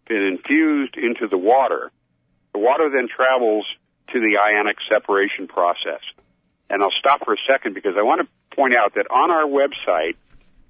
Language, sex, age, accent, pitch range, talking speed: English, male, 50-69, American, 95-135 Hz, 170 wpm